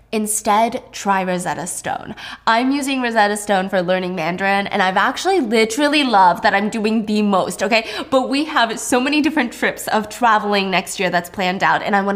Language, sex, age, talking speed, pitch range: English, female, 10-29, 190 wpm, 200-255 Hz